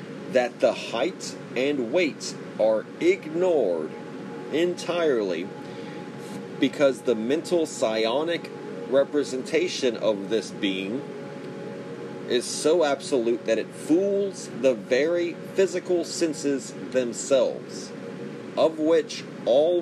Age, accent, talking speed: 40-59, American, 90 wpm